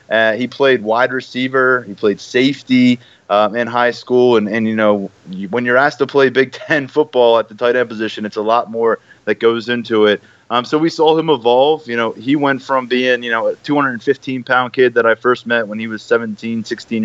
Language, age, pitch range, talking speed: English, 20-39, 110-130 Hz, 225 wpm